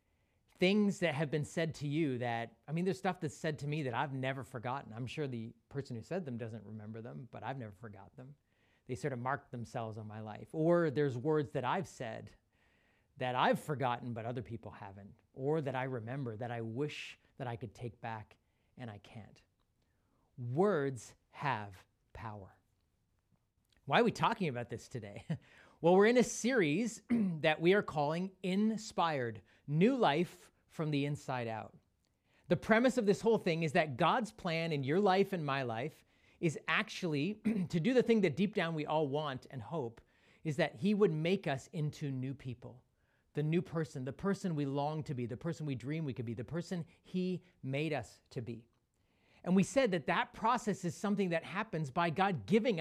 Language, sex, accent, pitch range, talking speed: English, male, American, 120-180 Hz, 195 wpm